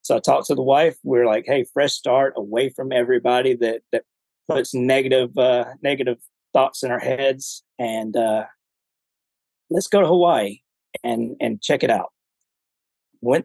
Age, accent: 40-59, American